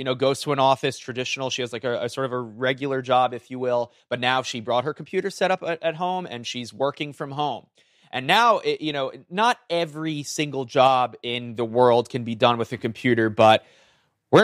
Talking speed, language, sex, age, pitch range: 235 wpm, English, male, 30-49, 120-150 Hz